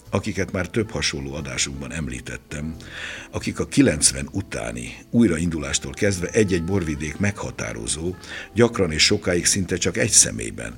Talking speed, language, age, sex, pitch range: 120 wpm, Hungarian, 60-79, male, 70-95 Hz